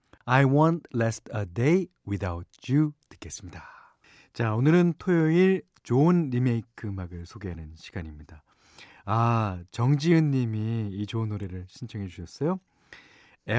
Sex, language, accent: male, Korean, native